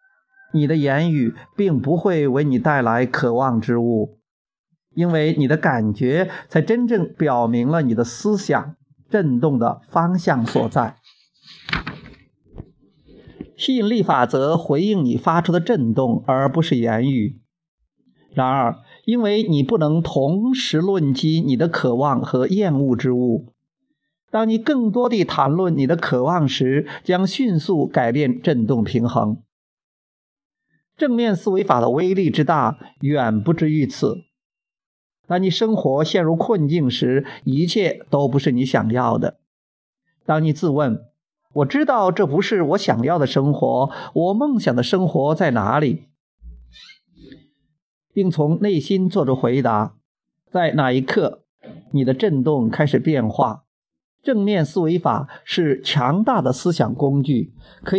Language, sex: Chinese, male